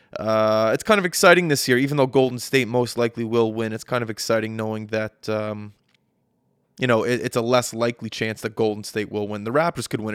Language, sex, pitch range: English, male, 110-125 Hz